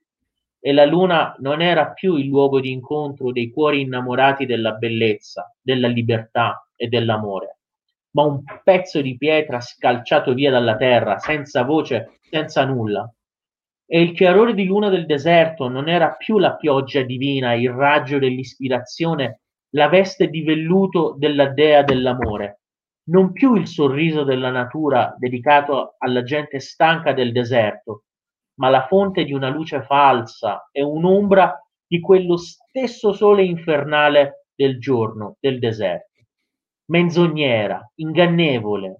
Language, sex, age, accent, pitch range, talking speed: Italian, male, 30-49, native, 125-165 Hz, 135 wpm